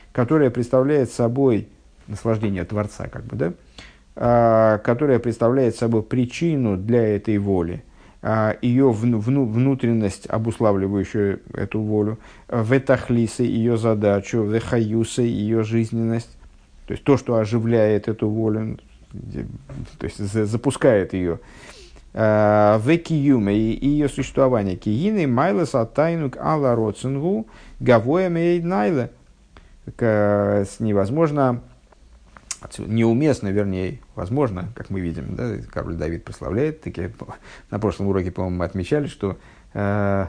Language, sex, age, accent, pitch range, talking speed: Russian, male, 50-69, native, 100-125 Hz, 105 wpm